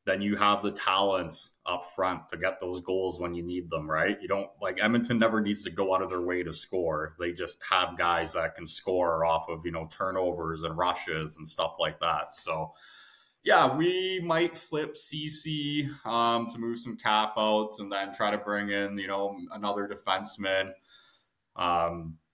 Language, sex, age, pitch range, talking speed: English, male, 20-39, 90-105 Hz, 190 wpm